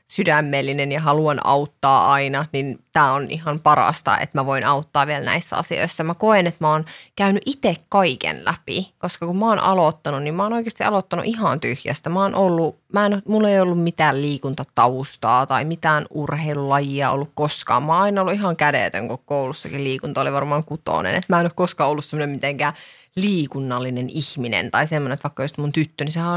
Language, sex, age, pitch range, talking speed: Finnish, female, 30-49, 145-195 Hz, 190 wpm